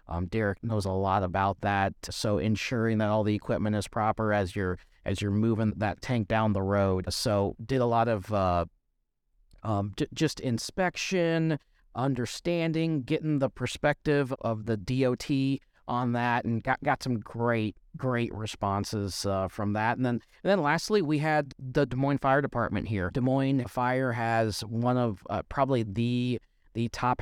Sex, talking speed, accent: male, 170 wpm, American